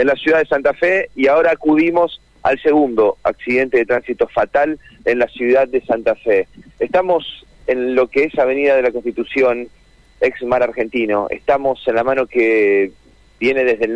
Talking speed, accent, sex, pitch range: 175 wpm, Argentinian, male, 115-190 Hz